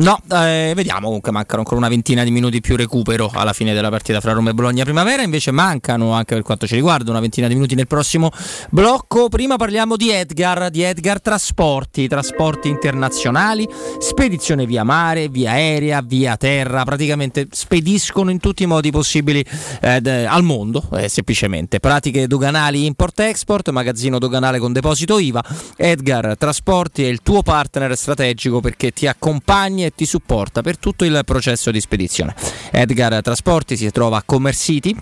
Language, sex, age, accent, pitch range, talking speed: Italian, male, 20-39, native, 120-165 Hz, 170 wpm